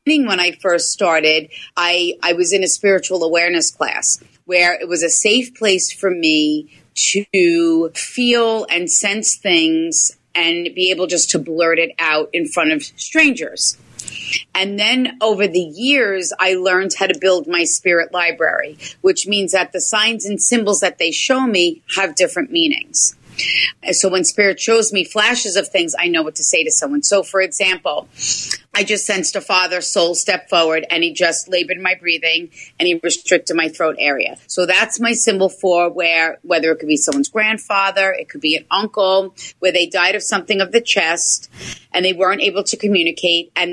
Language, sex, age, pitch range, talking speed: English, female, 30-49, 170-210 Hz, 185 wpm